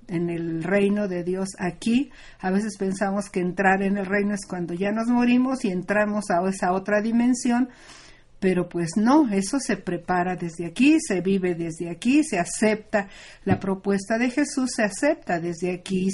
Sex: female